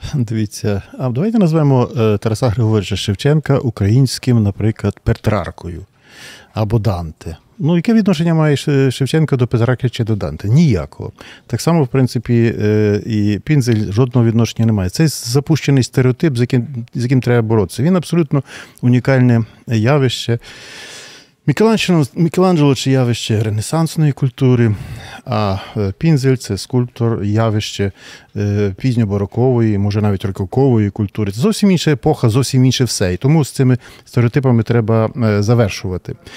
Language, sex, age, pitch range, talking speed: Ukrainian, male, 40-59, 110-135 Hz, 125 wpm